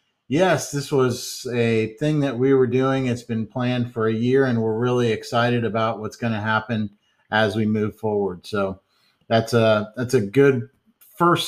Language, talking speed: English, 185 wpm